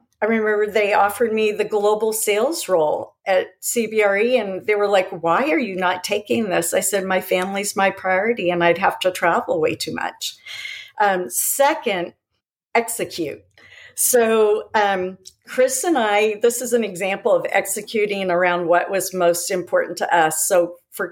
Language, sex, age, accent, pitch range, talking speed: English, female, 50-69, American, 180-225 Hz, 165 wpm